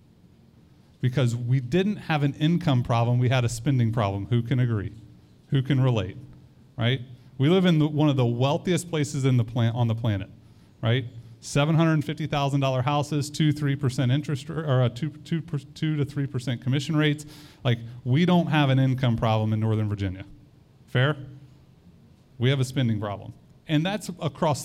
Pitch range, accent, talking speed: 120-150 Hz, American, 165 wpm